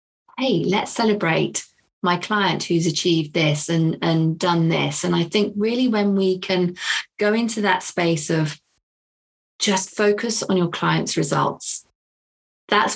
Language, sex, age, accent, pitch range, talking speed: English, female, 20-39, British, 165-195 Hz, 145 wpm